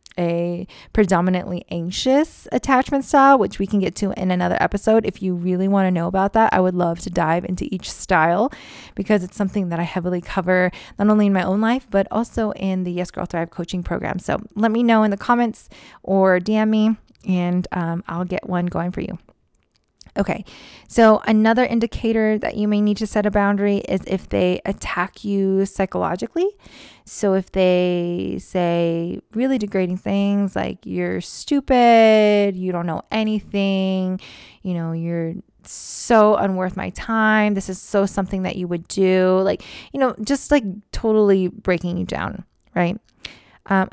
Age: 20-39